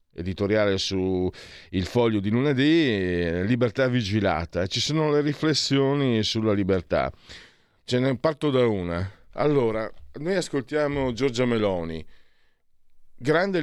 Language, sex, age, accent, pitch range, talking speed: Italian, male, 50-69, native, 90-125 Hz, 110 wpm